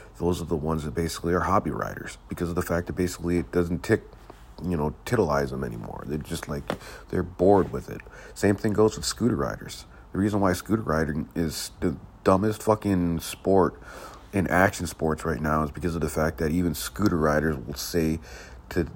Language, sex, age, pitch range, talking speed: English, male, 40-59, 70-85 Hz, 200 wpm